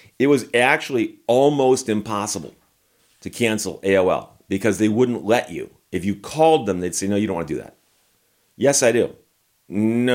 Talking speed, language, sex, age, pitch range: 175 wpm, English, male, 40-59, 100-120 Hz